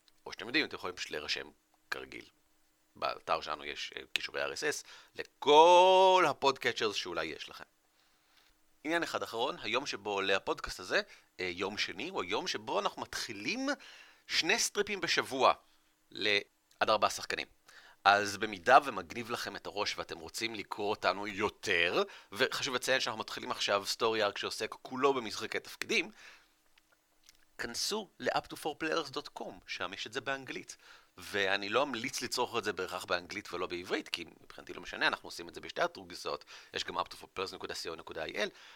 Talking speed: 140 wpm